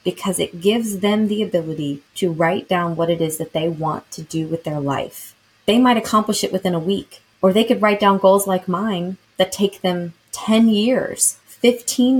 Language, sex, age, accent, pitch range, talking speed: English, female, 20-39, American, 160-205 Hz, 200 wpm